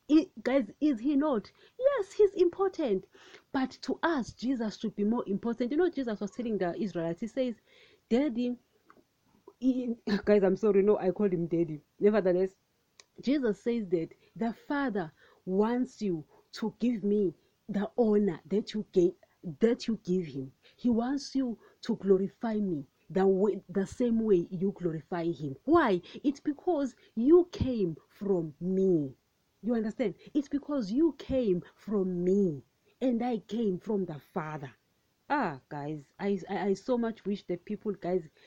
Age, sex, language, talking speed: 40-59, female, English, 150 wpm